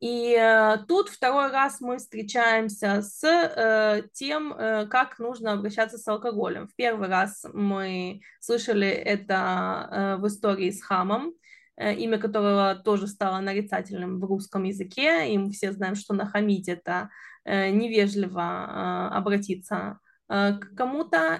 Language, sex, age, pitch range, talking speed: Russian, female, 20-39, 200-245 Hz, 120 wpm